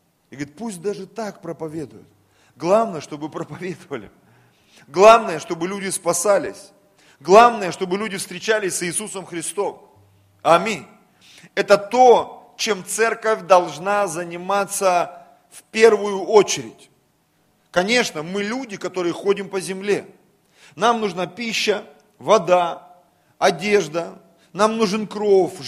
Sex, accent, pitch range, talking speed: male, native, 175-220 Hz, 105 wpm